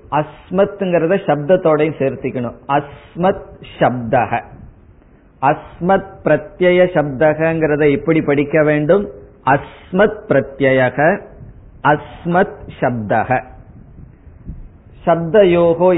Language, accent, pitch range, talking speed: Tamil, native, 140-180 Hz, 55 wpm